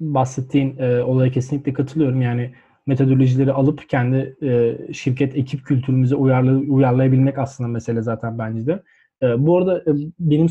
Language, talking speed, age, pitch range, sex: Turkish, 145 wpm, 20-39, 130-155 Hz, male